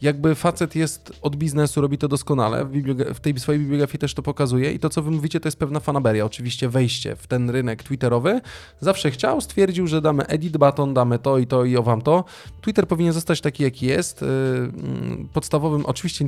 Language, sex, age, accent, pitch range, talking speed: Polish, male, 20-39, native, 125-150 Hz, 195 wpm